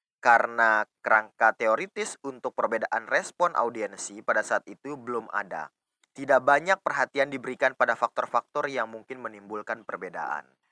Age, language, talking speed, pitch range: 20-39, Indonesian, 125 wpm, 110-145 Hz